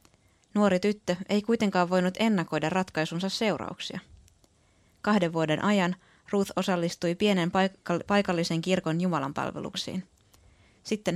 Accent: native